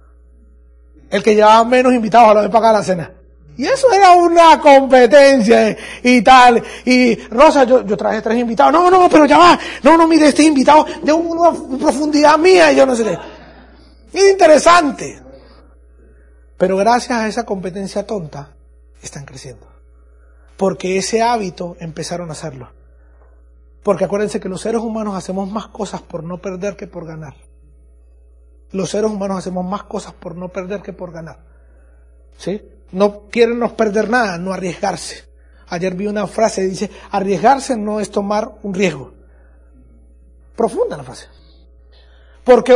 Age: 30-49